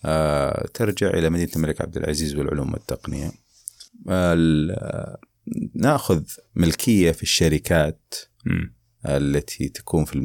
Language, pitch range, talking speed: Arabic, 80-100 Hz, 80 wpm